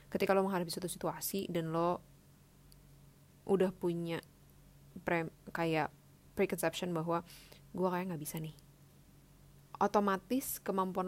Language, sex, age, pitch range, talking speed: Indonesian, female, 10-29, 165-190 Hz, 110 wpm